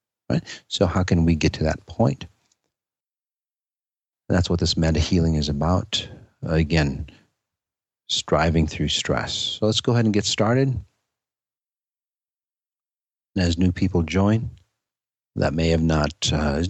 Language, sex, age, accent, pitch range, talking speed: English, male, 40-59, American, 75-100 Hz, 135 wpm